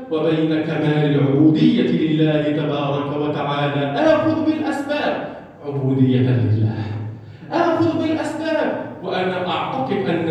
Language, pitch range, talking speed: Arabic, 130-185 Hz, 85 wpm